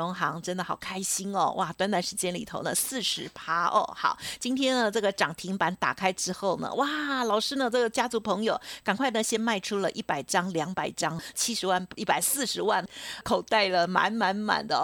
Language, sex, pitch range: Chinese, female, 185-250 Hz